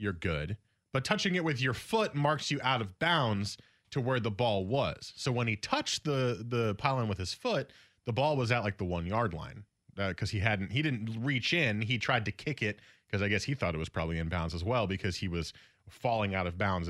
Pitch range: 95-130 Hz